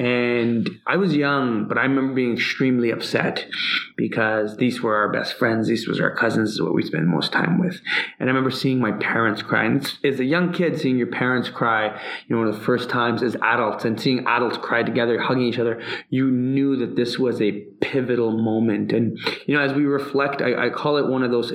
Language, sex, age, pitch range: English, male, 20-39, 115-135 Hz